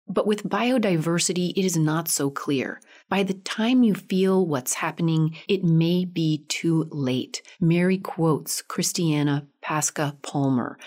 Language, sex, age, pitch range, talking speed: English, female, 30-49, 150-205 Hz, 140 wpm